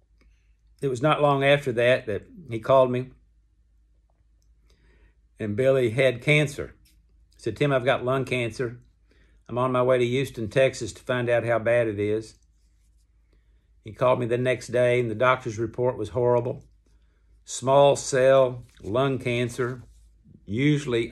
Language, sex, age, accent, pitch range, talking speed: English, male, 60-79, American, 95-130 Hz, 150 wpm